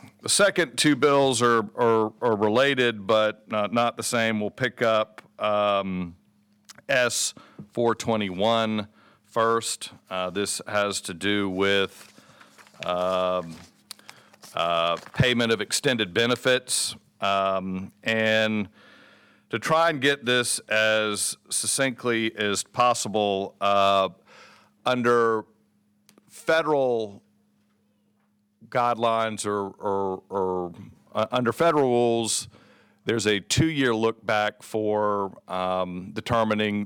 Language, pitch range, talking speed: English, 100-115 Hz, 100 wpm